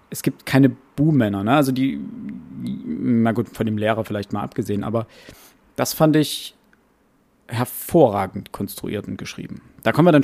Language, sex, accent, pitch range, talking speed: German, male, German, 110-140 Hz, 165 wpm